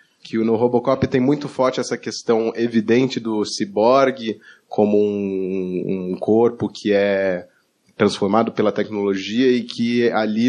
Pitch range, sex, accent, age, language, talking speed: 100-115 Hz, male, Brazilian, 20-39, Portuguese, 130 wpm